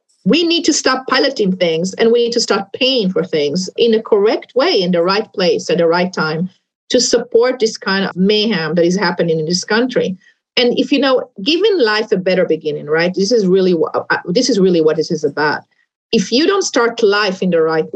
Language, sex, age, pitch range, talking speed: English, female, 40-59, 195-255 Hz, 215 wpm